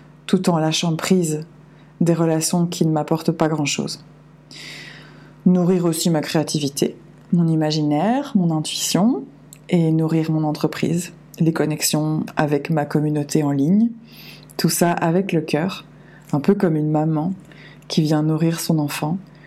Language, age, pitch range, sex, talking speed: French, 20-39, 155-180 Hz, female, 140 wpm